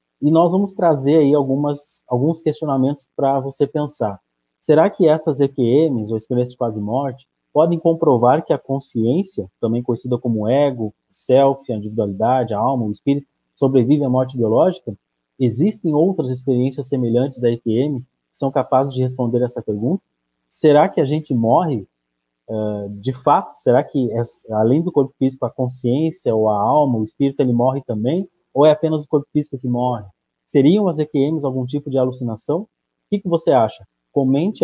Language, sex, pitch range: Portuguese, male, 115-150 Hz